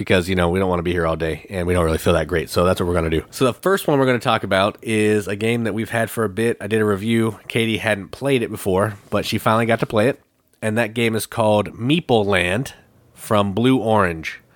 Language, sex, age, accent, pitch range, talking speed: English, male, 30-49, American, 95-120 Hz, 285 wpm